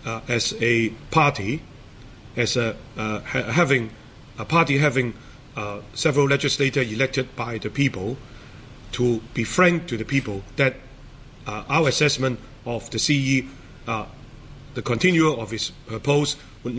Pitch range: 105-130 Hz